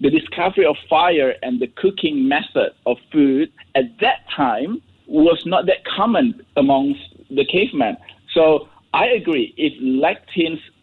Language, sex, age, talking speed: English, male, 50-69, 140 wpm